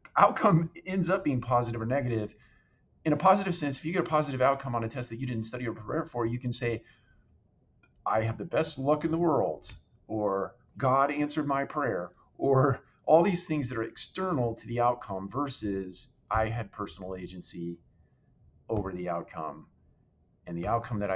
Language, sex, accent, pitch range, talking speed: English, male, American, 100-140 Hz, 185 wpm